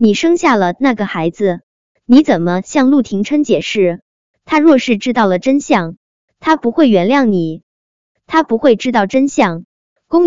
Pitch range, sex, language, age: 195-275 Hz, male, Chinese, 20-39